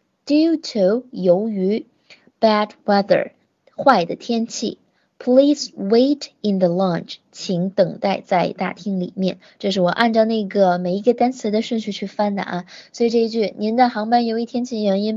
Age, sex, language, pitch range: 20-39, female, Chinese, 190-235 Hz